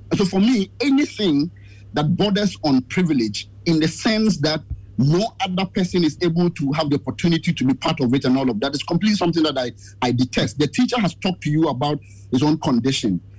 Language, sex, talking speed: English, male, 210 wpm